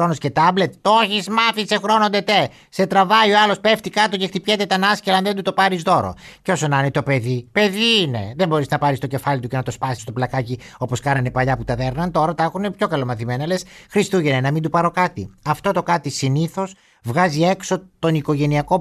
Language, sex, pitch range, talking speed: Greek, male, 130-185 Hz, 225 wpm